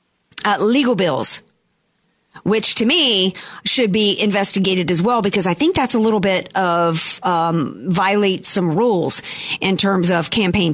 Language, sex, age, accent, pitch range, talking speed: English, female, 40-59, American, 190-275 Hz, 150 wpm